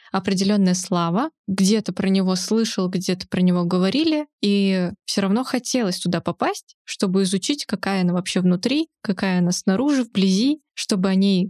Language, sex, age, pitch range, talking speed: Russian, female, 20-39, 185-235 Hz, 150 wpm